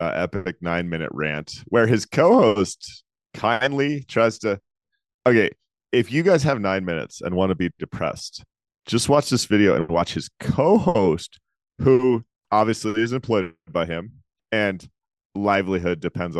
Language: English